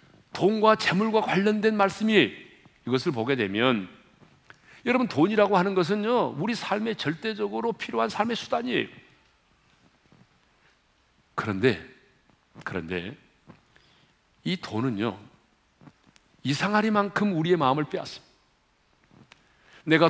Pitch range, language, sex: 190-225 Hz, Korean, male